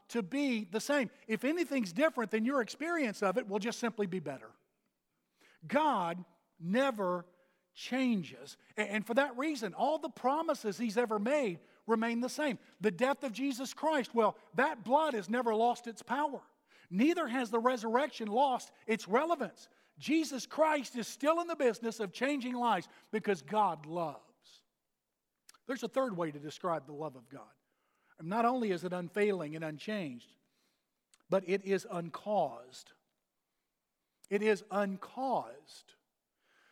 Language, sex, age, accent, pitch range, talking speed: English, male, 50-69, American, 180-250 Hz, 145 wpm